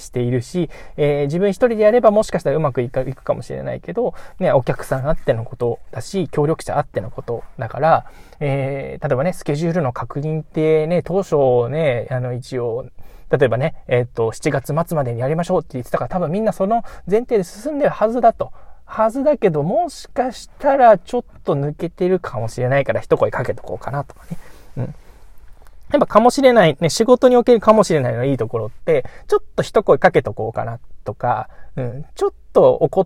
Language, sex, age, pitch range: Japanese, male, 20-39, 125-190 Hz